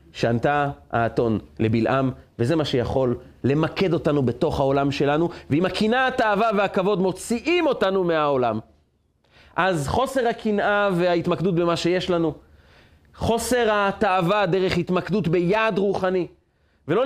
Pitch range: 105-170 Hz